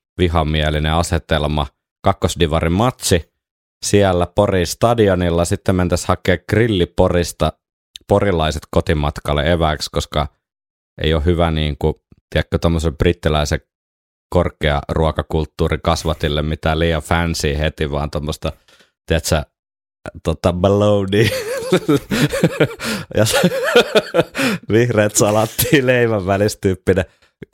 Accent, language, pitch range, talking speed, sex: native, Finnish, 80-95 Hz, 85 wpm, male